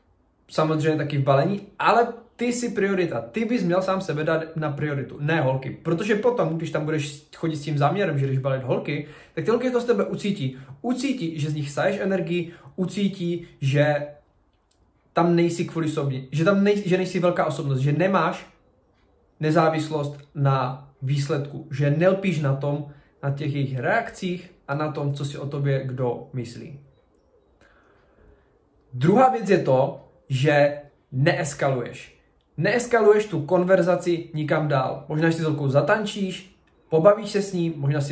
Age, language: 20-39, Czech